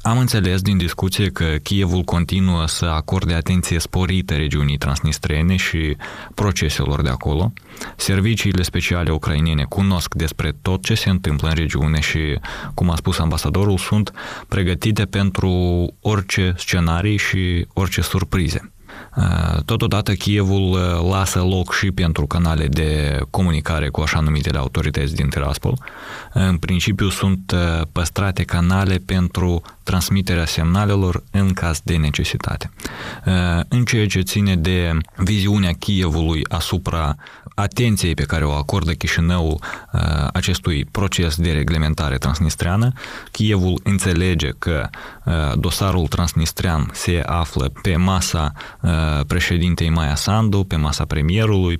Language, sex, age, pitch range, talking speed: Romanian, male, 20-39, 80-95 Hz, 120 wpm